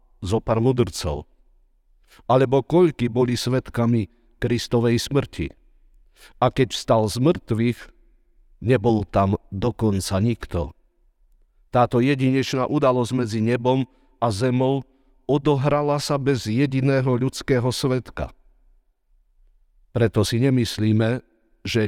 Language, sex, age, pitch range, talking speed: Slovak, male, 50-69, 105-130 Hz, 95 wpm